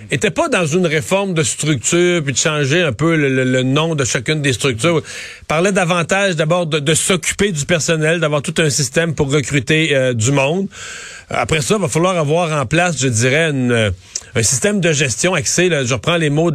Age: 40-59